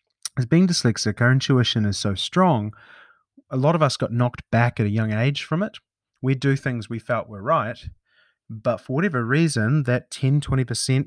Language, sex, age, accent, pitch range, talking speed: English, male, 30-49, Australian, 105-145 Hz, 195 wpm